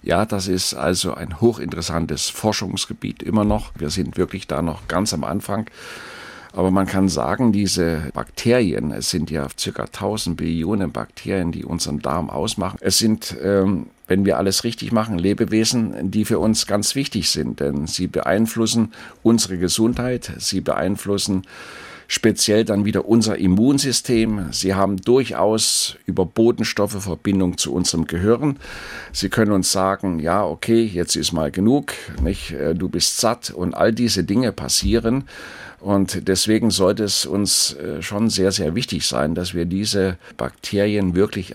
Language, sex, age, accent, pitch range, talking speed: German, male, 50-69, German, 90-110 Hz, 150 wpm